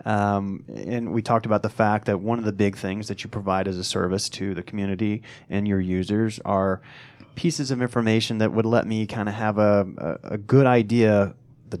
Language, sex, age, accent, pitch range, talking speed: English, male, 30-49, American, 100-115 Hz, 205 wpm